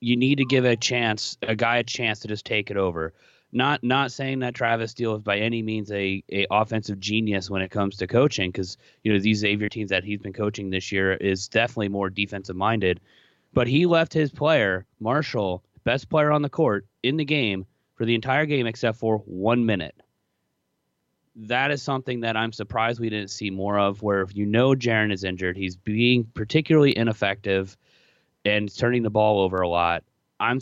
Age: 30-49